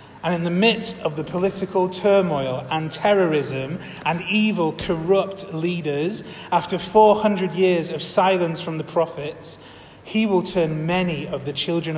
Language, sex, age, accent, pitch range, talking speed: English, male, 30-49, British, 140-180 Hz, 145 wpm